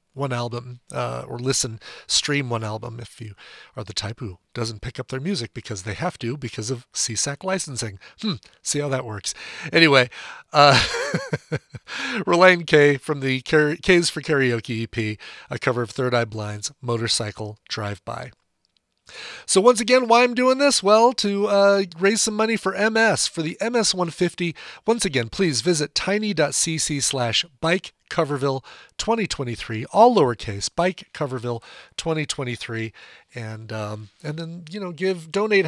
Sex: male